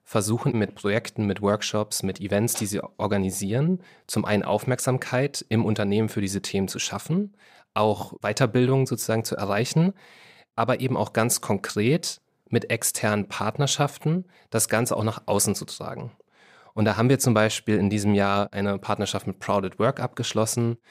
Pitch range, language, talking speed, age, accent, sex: 100-125 Hz, German, 160 wpm, 30-49, German, male